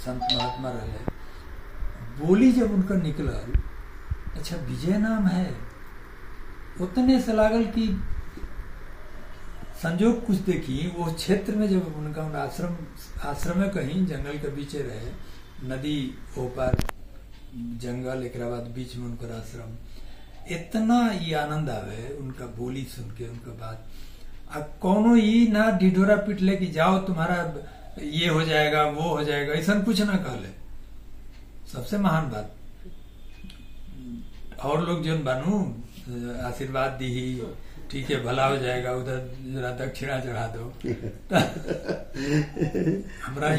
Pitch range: 115-170 Hz